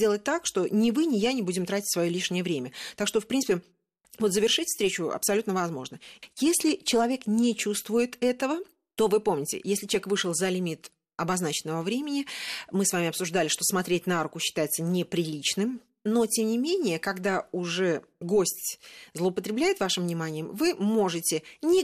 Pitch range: 170-225 Hz